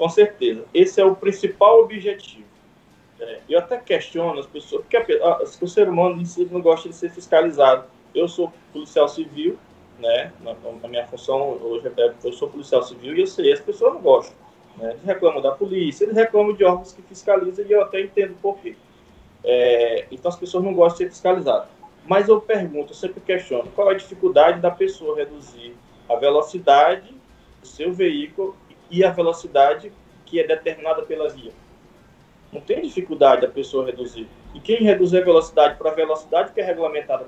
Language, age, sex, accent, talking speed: Portuguese, 20-39, male, Brazilian, 185 wpm